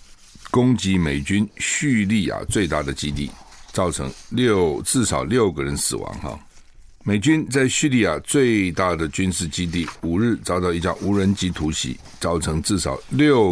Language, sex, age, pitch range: Chinese, male, 60-79, 80-110 Hz